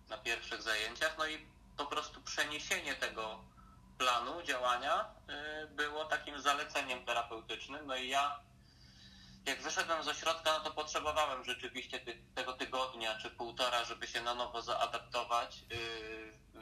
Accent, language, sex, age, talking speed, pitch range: native, Polish, male, 20-39, 135 wpm, 110-145 Hz